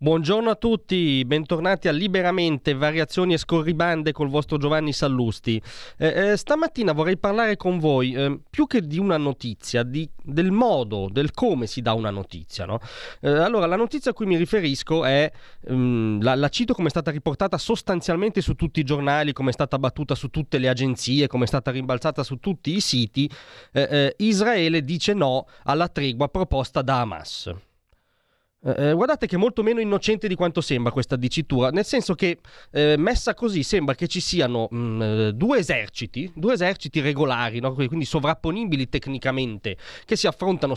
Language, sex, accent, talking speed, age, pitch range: Italian, male, native, 175 wpm, 30-49, 130-185 Hz